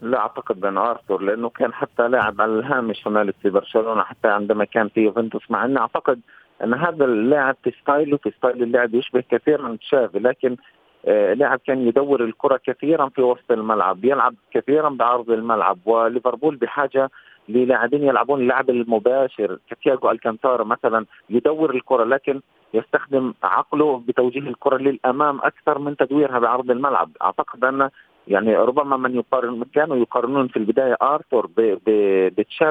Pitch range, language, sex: 115-140 Hz, Arabic, male